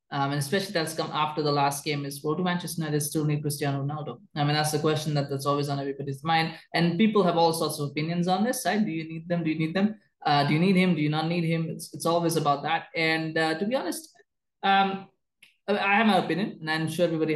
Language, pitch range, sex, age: English, 150-185 Hz, male, 20-39